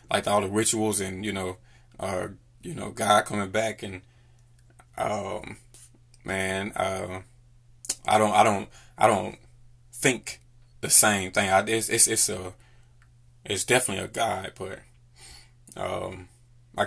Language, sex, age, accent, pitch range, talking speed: English, male, 20-39, American, 105-130 Hz, 140 wpm